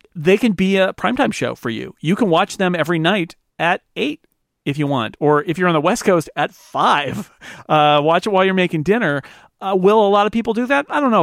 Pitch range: 130-175 Hz